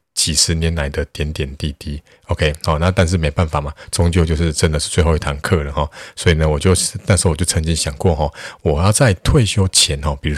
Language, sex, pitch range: Chinese, male, 75-90 Hz